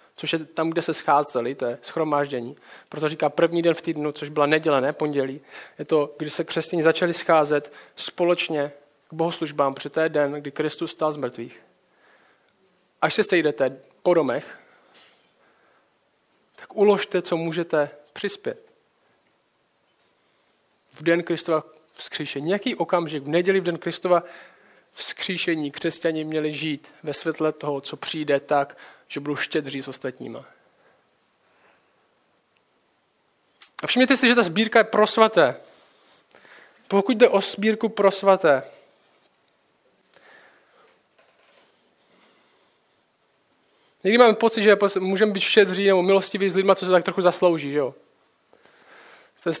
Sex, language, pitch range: male, Czech, 155-205 Hz